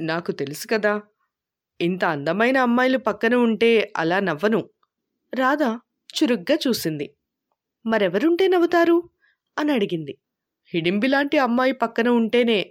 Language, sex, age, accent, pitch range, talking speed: Telugu, female, 20-39, native, 195-285 Hz, 95 wpm